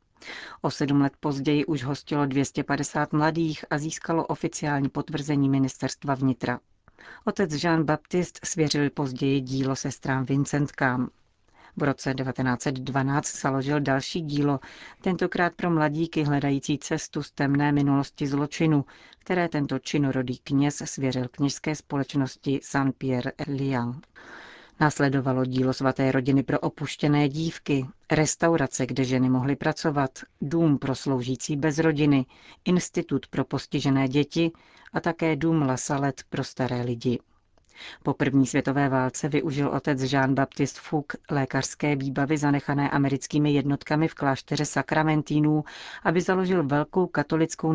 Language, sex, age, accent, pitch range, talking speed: Czech, female, 40-59, native, 135-155 Hz, 120 wpm